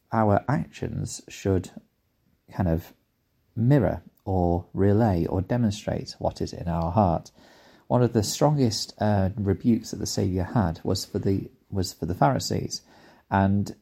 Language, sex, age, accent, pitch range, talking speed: English, male, 30-49, British, 85-100 Hz, 145 wpm